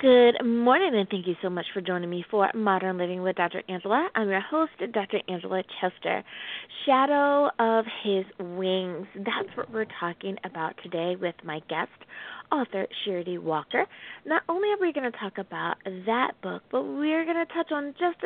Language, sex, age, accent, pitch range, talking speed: English, female, 20-39, American, 190-265 Hz, 180 wpm